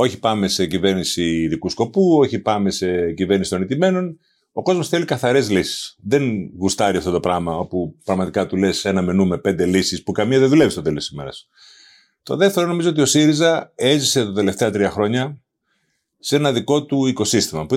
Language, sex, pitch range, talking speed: Greek, male, 95-155 Hz, 190 wpm